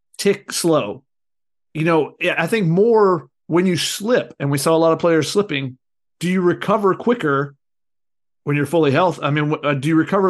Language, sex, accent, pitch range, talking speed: English, male, American, 150-195 Hz, 180 wpm